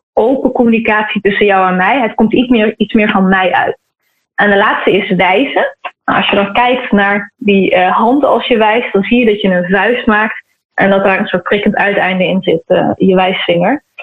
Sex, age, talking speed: female, 20-39, 215 wpm